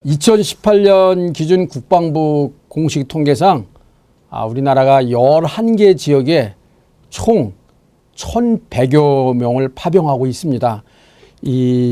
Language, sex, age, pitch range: Korean, male, 50-69, 135-185 Hz